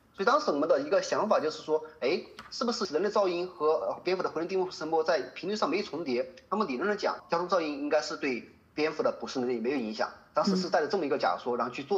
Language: Chinese